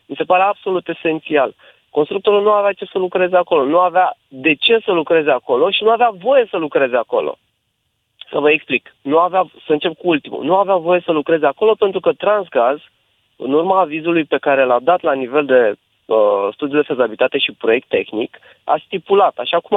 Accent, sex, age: native, male, 30-49